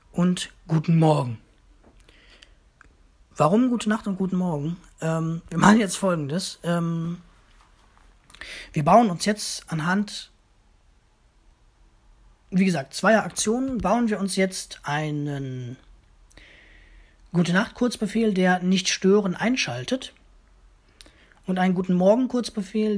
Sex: male